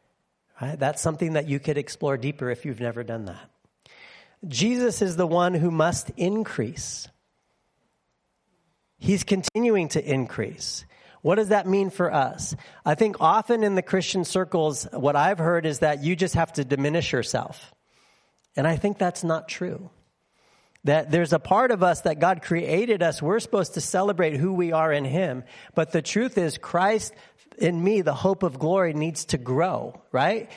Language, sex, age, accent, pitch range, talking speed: English, male, 40-59, American, 150-190 Hz, 170 wpm